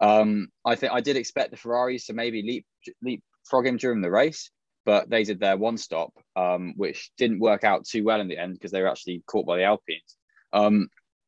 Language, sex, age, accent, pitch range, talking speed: English, male, 20-39, British, 95-115 Hz, 220 wpm